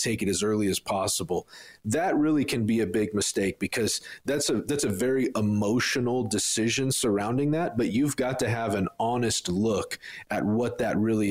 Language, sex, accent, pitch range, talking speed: English, male, American, 105-125 Hz, 185 wpm